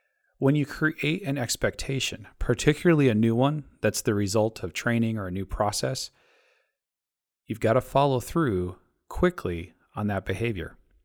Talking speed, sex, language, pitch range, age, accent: 145 wpm, male, English, 100-135 Hz, 40-59, American